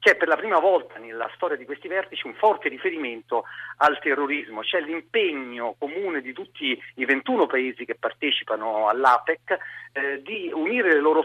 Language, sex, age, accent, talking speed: Italian, male, 40-59, native, 165 wpm